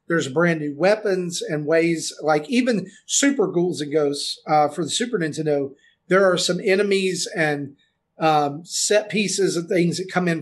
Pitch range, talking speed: 160-210 Hz, 175 wpm